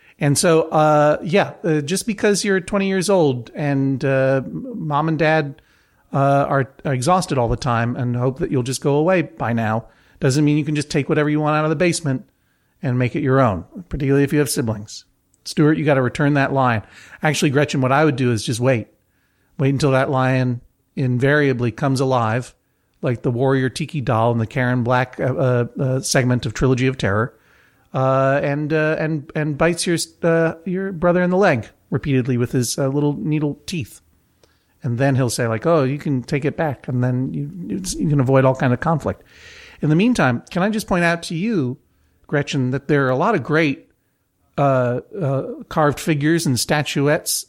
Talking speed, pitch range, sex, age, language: 200 wpm, 130-160 Hz, male, 40-59, English